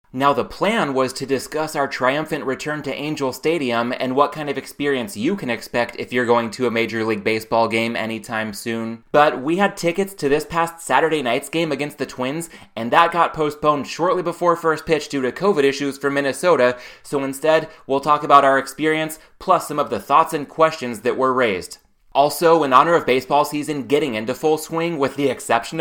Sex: male